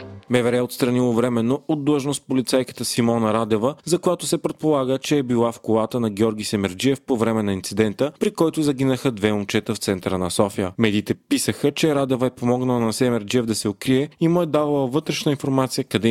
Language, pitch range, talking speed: Bulgarian, 110-135 Hz, 195 wpm